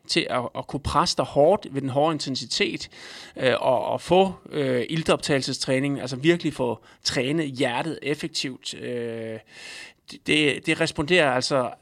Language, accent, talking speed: Danish, native, 135 wpm